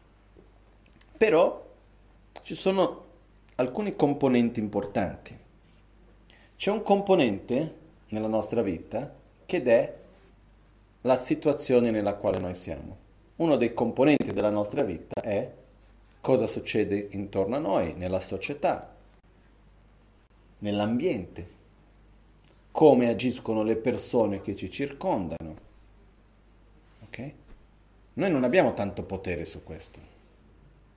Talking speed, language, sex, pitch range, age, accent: 95 wpm, Italian, male, 100-125 Hz, 40-59, native